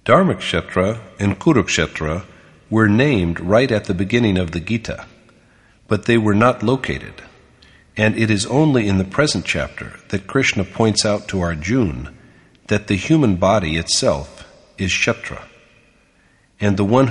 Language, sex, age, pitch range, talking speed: English, male, 50-69, 90-115 Hz, 145 wpm